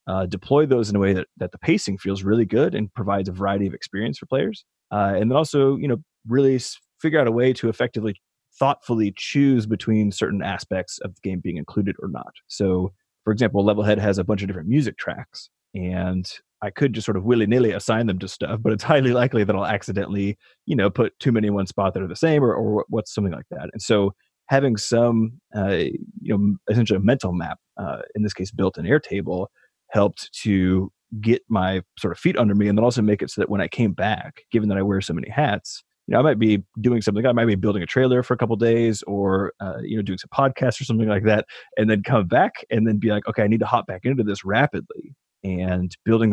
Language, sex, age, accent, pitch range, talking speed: English, male, 30-49, American, 100-120 Hz, 240 wpm